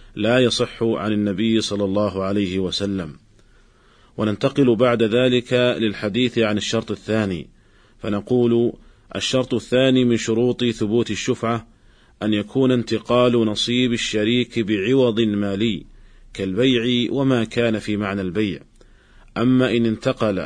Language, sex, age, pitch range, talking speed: Arabic, male, 40-59, 105-125 Hz, 110 wpm